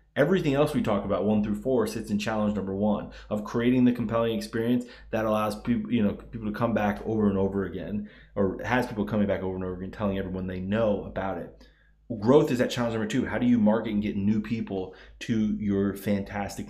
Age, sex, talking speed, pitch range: 20-39, male, 225 wpm, 100-125 Hz